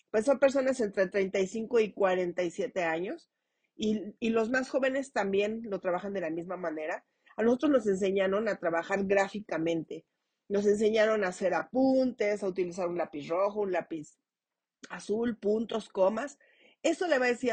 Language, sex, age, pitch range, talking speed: Spanish, female, 40-59, 185-240 Hz, 160 wpm